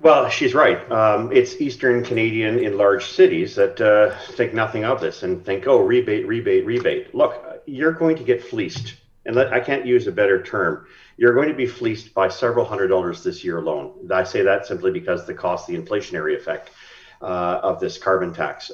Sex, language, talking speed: male, English, 200 wpm